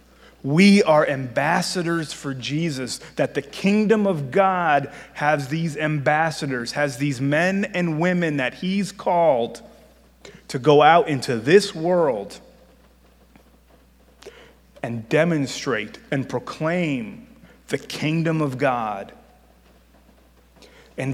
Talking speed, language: 100 wpm, English